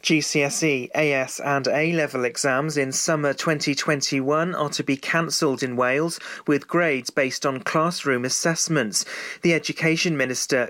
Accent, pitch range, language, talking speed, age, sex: British, 130-160 Hz, English, 130 wpm, 40-59, male